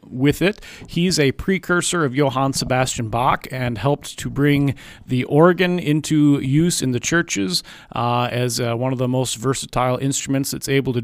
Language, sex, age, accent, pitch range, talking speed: English, male, 40-59, American, 125-150 Hz, 175 wpm